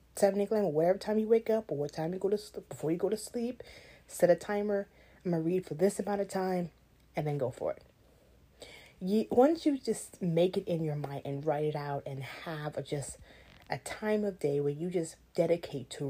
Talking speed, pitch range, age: 225 wpm, 155-205 Hz, 30-49